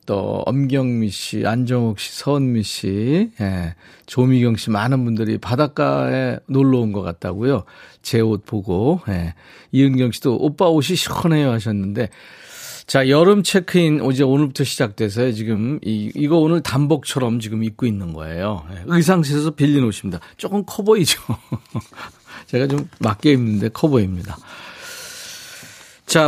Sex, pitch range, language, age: male, 115-175 Hz, Korean, 40-59